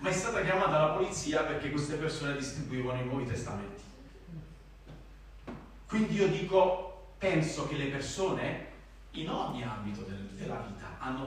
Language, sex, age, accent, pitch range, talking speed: Italian, male, 40-59, native, 105-155 Hz, 140 wpm